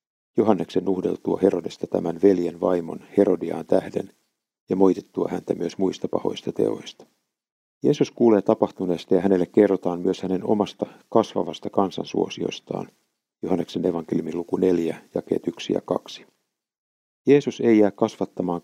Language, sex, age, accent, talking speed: Finnish, male, 50-69, native, 120 wpm